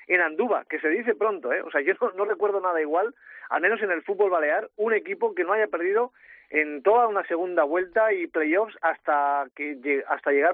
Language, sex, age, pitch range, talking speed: Spanish, male, 40-59, 150-195 Hz, 215 wpm